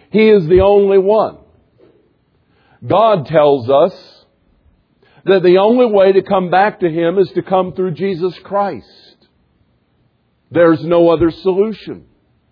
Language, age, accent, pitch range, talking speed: English, 50-69, American, 170-205 Hz, 130 wpm